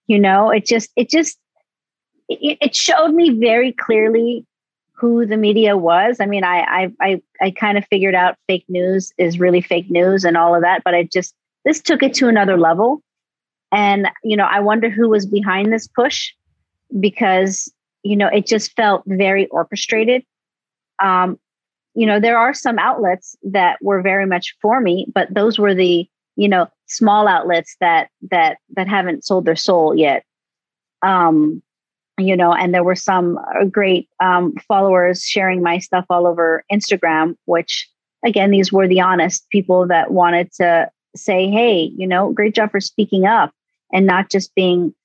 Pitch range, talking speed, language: 185-225 Hz, 175 wpm, English